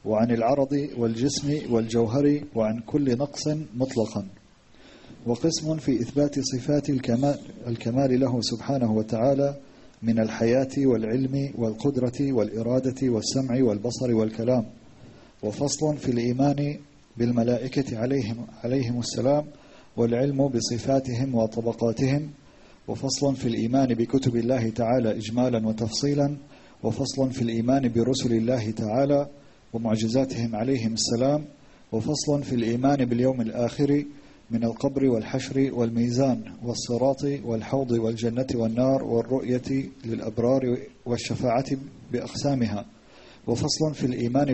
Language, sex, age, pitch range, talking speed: English, male, 40-59, 115-135 Hz, 95 wpm